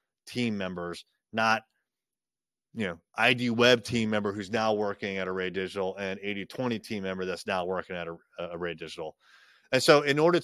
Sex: male